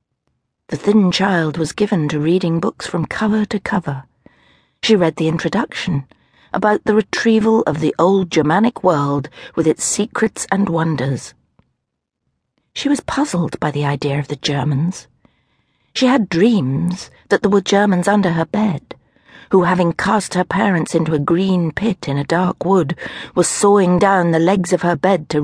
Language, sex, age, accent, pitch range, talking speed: English, female, 60-79, British, 150-200 Hz, 165 wpm